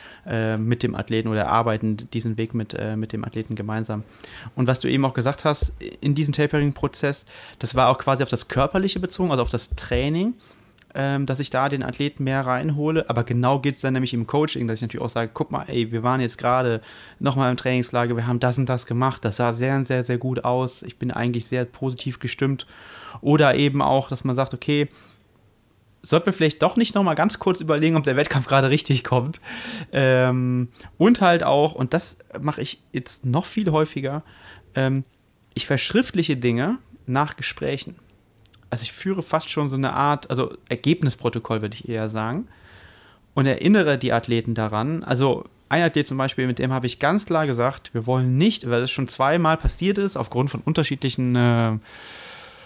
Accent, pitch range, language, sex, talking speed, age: German, 120-145 Hz, German, male, 190 wpm, 30-49